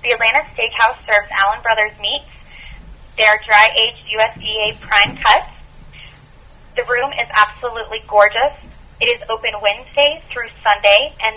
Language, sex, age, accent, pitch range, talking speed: English, female, 20-39, American, 205-240 Hz, 130 wpm